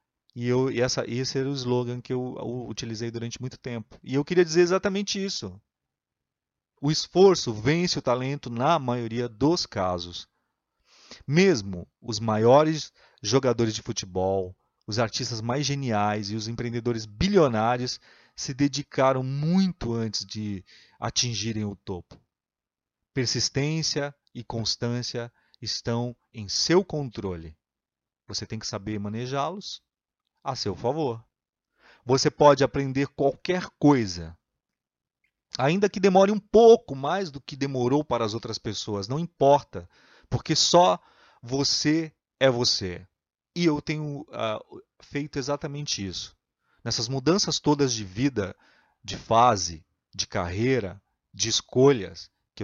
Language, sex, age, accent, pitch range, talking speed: Portuguese, male, 30-49, Brazilian, 105-145 Hz, 125 wpm